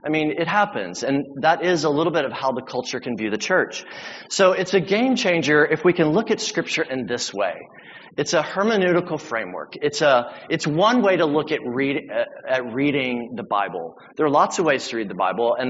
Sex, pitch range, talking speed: male, 135-190 Hz, 225 wpm